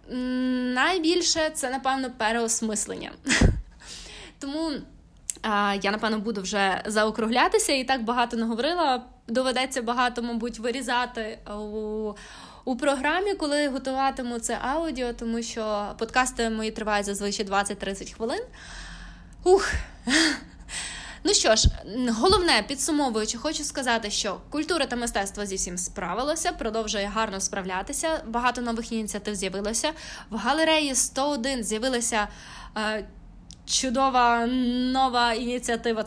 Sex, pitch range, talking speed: female, 225-290 Hz, 105 wpm